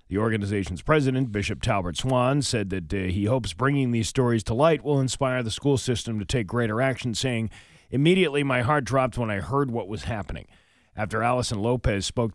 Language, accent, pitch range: English, American, 100-130 Hz